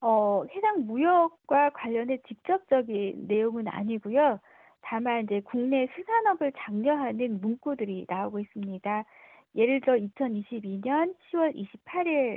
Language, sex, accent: Korean, female, native